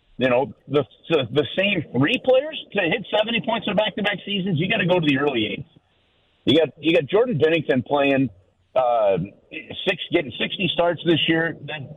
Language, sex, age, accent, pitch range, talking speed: English, male, 50-69, American, 110-155 Hz, 190 wpm